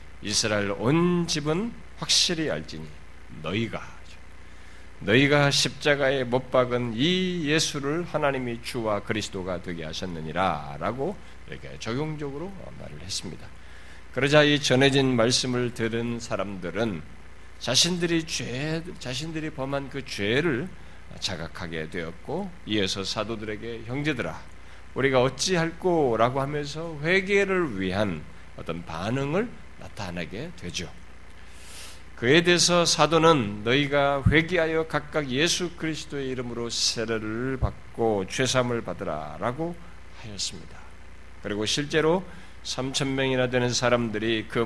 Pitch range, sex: 90-145 Hz, male